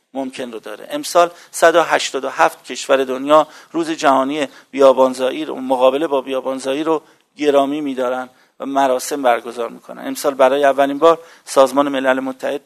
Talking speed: 135 wpm